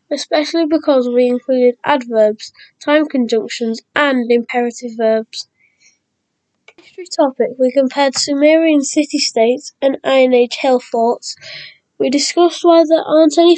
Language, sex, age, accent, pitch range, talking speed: English, female, 10-29, British, 235-290 Hz, 120 wpm